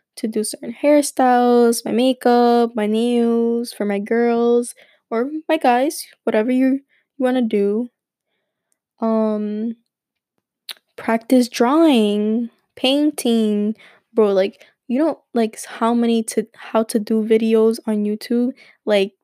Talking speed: 120 wpm